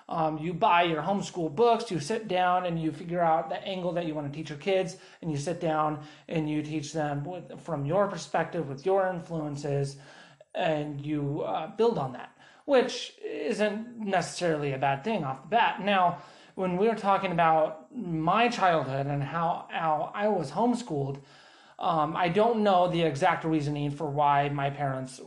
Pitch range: 150-190 Hz